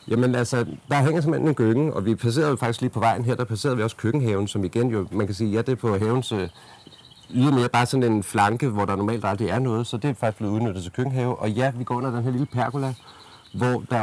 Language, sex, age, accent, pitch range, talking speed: Danish, male, 40-59, native, 105-125 Hz, 280 wpm